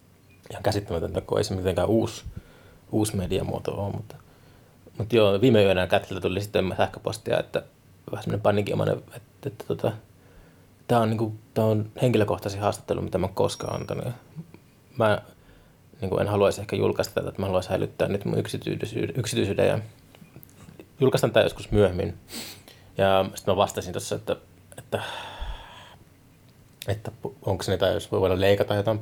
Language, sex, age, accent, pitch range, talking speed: Finnish, male, 20-39, native, 95-115 Hz, 150 wpm